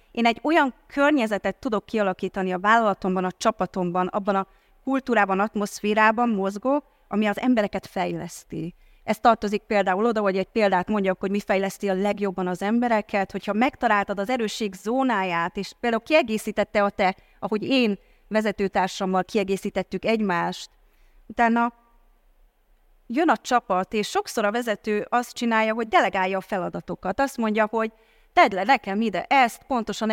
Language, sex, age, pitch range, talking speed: Hungarian, female, 30-49, 195-240 Hz, 145 wpm